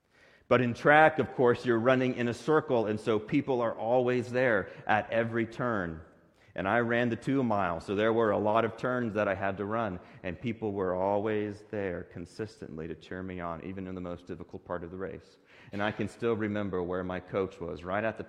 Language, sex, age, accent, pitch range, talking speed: English, male, 40-59, American, 90-110 Hz, 220 wpm